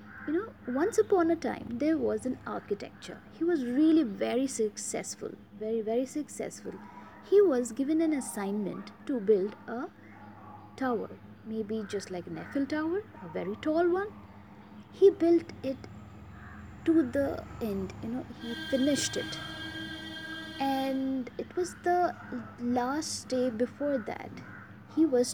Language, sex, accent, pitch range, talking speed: English, female, Indian, 230-315 Hz, 135 wpm